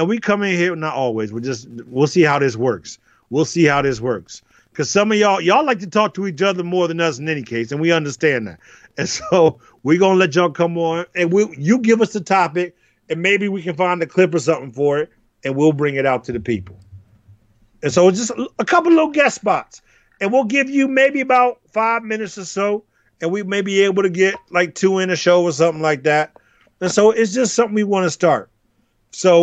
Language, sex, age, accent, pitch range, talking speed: English, male, 40-59, American, 130-195 Hz, 245 wpm